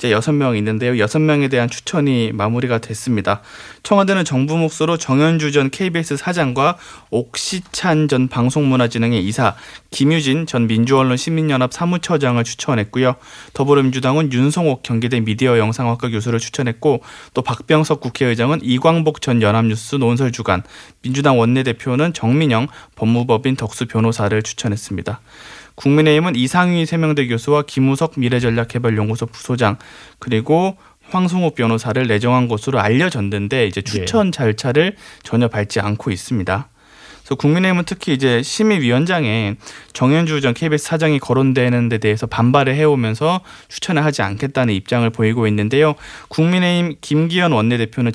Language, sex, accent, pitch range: Korean, male, native, 115-150 Hz